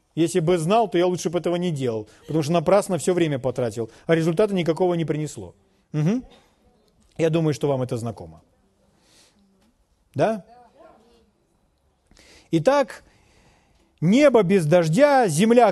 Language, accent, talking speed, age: Russian, native, 125 wpm, 40-59